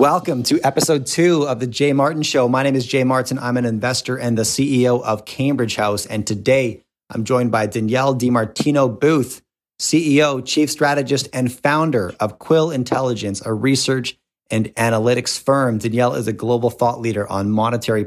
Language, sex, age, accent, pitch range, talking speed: English, male, 30-49, American, 110-130 Hz, 175 wpm